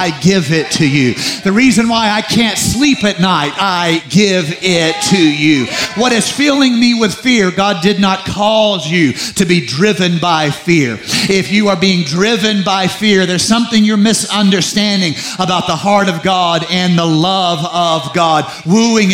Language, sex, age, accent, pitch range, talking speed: English, male, 50-69, American, 155-200 Hz, 175 wpm